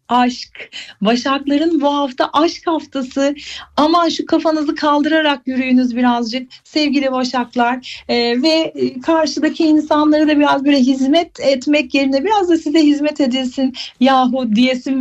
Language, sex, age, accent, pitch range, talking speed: Turkish, female, 40-59, native, 245-305 Hz, 130 wpm